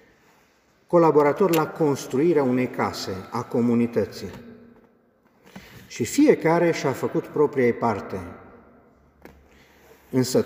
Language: Romanian